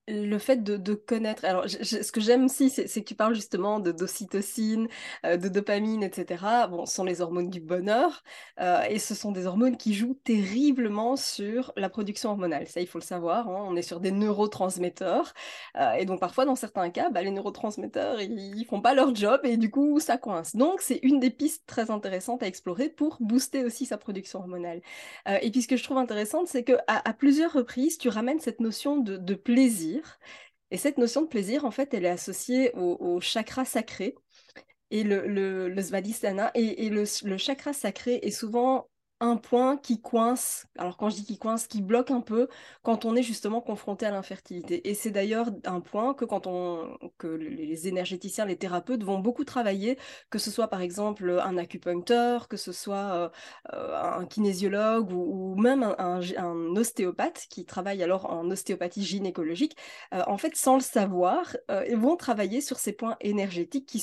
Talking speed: 200 wpm